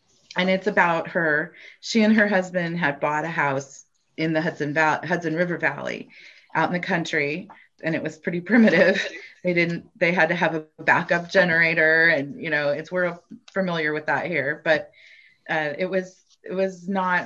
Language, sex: English, female